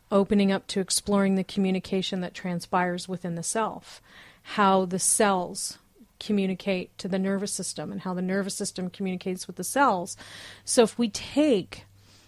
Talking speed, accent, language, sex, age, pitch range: 155 wpm, American, English, female, 40-59, 180-210 Hz